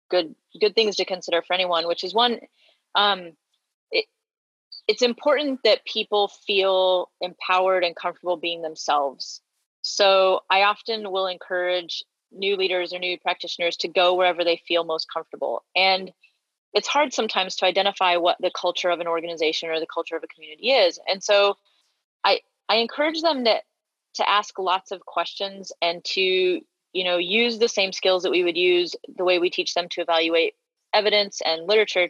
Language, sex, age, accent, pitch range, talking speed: English, female, 30-49, American, 175-215 Hz, 170 wpm